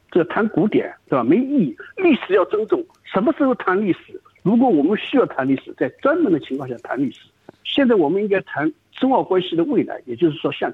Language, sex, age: Chinese, male, 60-79